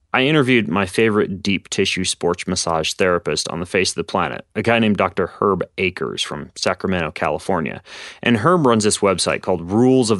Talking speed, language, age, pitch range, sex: 190 wpm, English, 30-49, 90-115 Hz, male